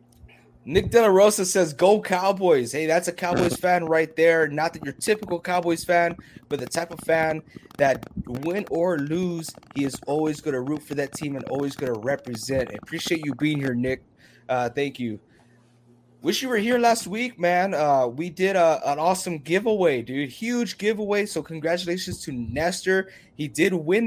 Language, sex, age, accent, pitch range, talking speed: English, male, 20-39, American, 140-185 Hz, 190 wpm